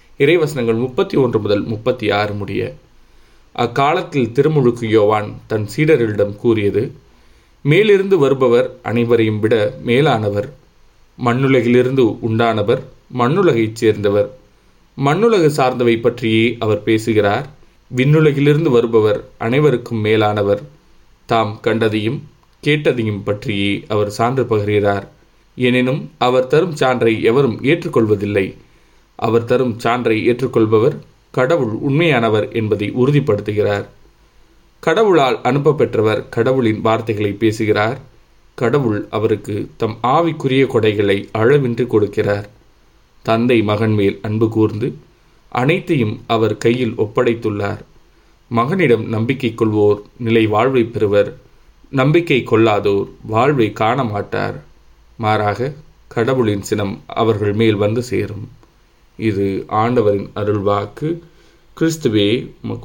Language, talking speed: Tamil, 90 wpm